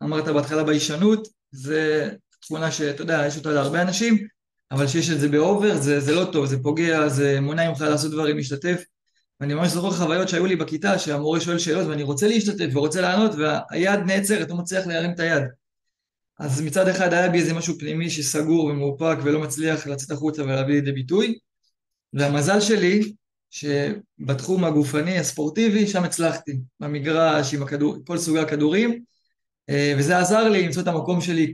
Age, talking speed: 20-39, 165 wpm